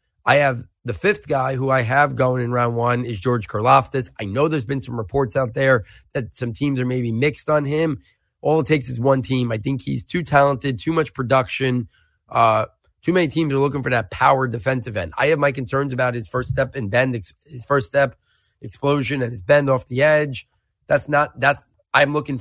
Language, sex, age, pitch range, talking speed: English, male, 30-49, 120-140 Hz, 215 wpm